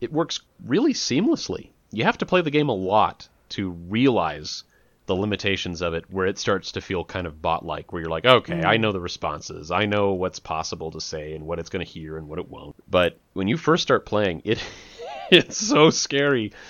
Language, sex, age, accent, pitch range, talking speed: English, male, 30-49, American, 95-125 Hz, 215 wpm